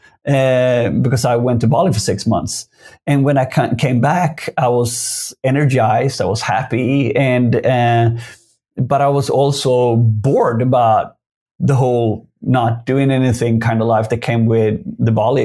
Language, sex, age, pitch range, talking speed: English, male, 30-49, 115-140 Hz, 165 wpm